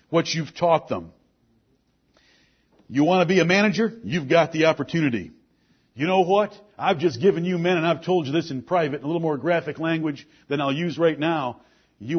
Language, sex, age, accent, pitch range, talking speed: English, male, 50-69, American, 140-175 Hz, 200 wpm